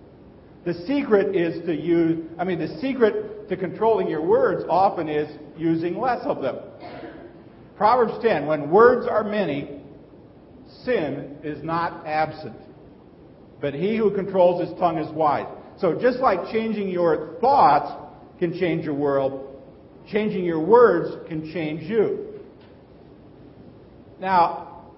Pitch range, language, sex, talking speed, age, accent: 150-210 Hz, English, male, 130 wpm, 50-69, American